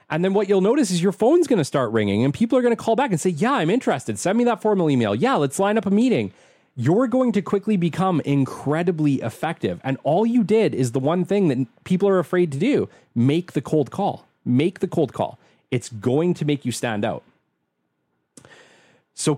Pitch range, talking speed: 110-165 Hz, 225 wpm